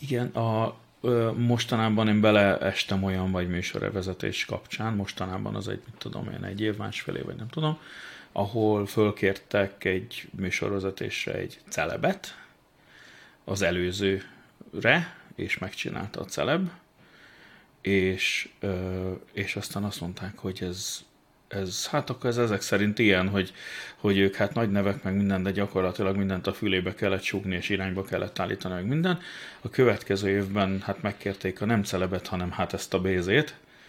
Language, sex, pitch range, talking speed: Hungarian, male, 95-120 Hz, 140 wpm